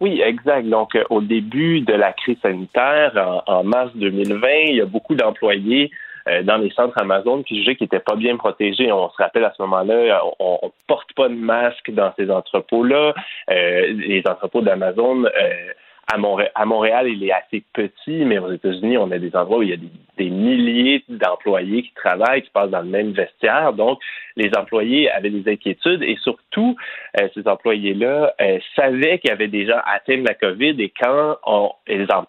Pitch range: 100-135 Hz